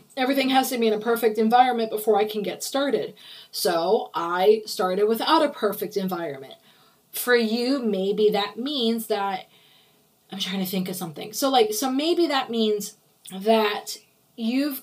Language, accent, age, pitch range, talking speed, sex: English, American, 20-39, 205-260 Hz, 160 wpm, female